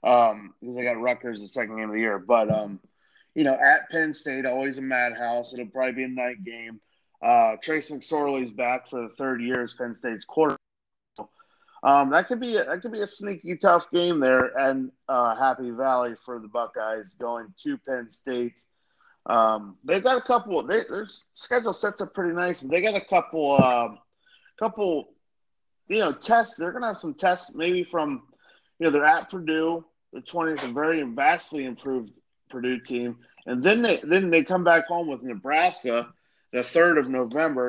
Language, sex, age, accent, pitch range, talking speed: English, male, 30-49, American, 120-170 Hz, 190 wpm